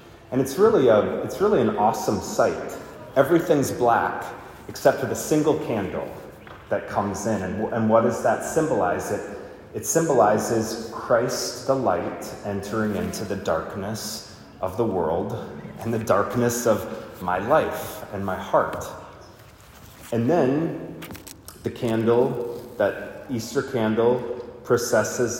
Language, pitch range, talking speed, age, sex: English, 105-125 Hz, 130 wpm, 30-49, male